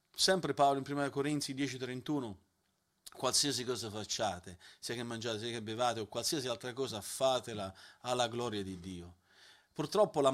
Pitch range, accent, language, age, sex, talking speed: 120-155 Hz, native, Italian, 40-59, male, 150 wpm